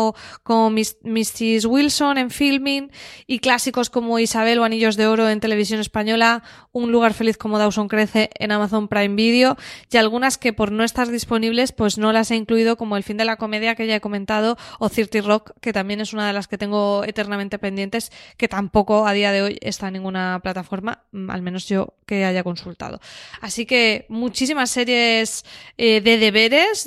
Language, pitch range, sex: Spanish, 210-235 Hz, female